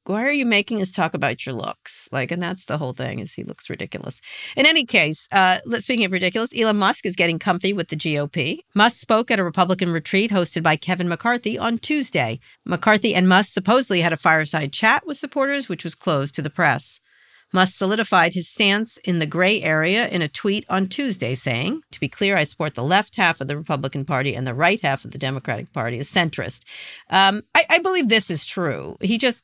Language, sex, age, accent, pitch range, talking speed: English, female, 50-69, American, 140-205 Hz, 220 wpm